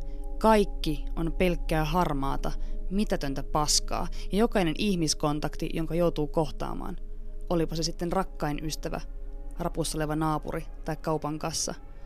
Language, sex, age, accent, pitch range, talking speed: Finnish, female, 20-39, native, 140-170 Hz, 110 wpm